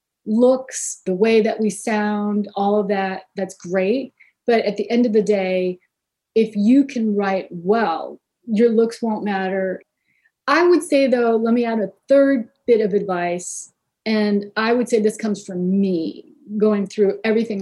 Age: 30-49